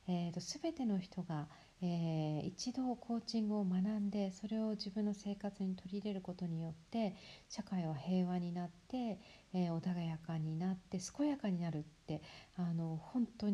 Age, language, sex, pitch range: 50-69, Japanese, female, 165-210 Hz